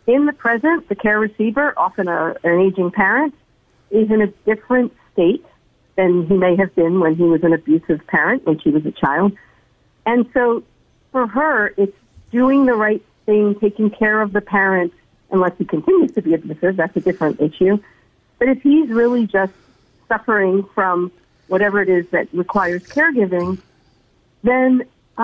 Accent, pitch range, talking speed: American, 170-235 Hz, 165 wpm